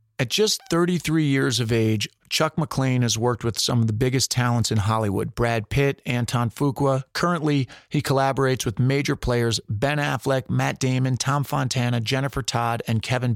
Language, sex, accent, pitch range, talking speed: English, male, American, 115-140 Hz, 170 wpm